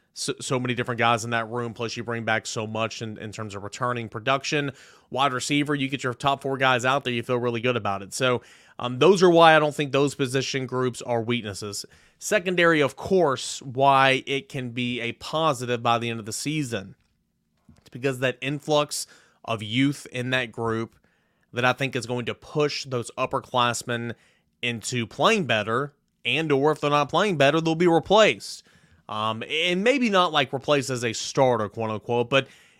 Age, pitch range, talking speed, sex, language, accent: 30-49, 120-145 Hz, 195 wpm, male, English, American